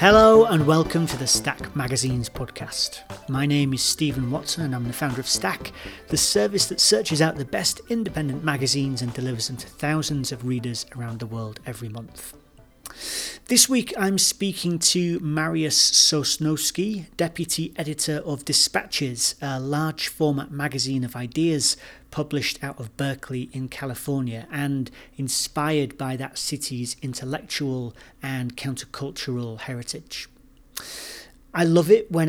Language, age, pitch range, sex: English, 40-59, 130-155 Hz, male